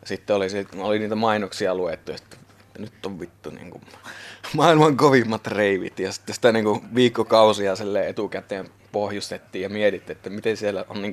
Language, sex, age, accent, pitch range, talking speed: Finnish, male, 20-39, native, 100-120 Hz, 165 wpm